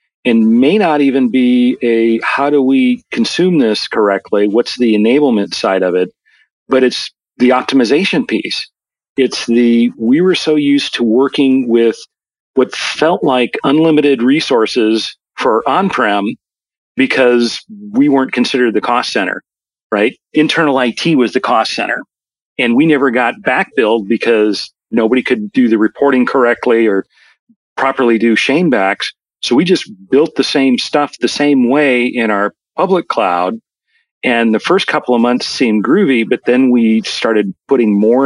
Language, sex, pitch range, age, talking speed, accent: English, male, 115-135 Hz, 40-59, 155 wpm, American